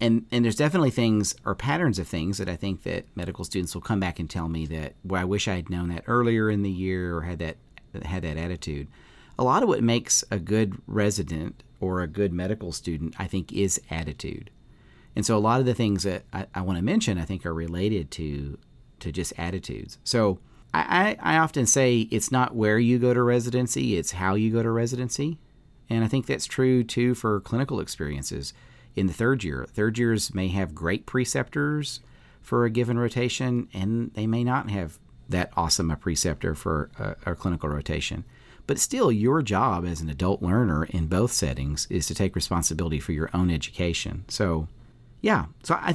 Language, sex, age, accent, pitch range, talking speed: English, male, 40-59, American, 85-120 Hz, 200 wpm